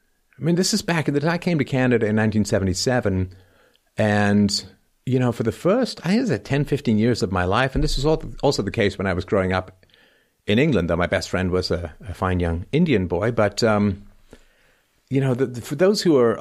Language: English